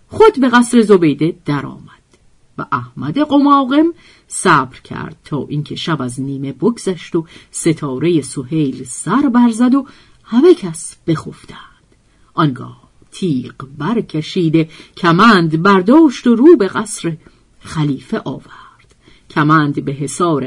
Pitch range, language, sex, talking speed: 150-250 Hz, Persian, female, 115 wpm